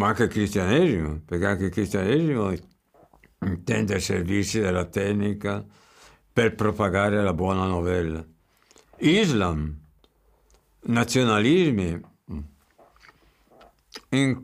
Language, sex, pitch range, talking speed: Italian, male, 100-130 Hz, 85 wpm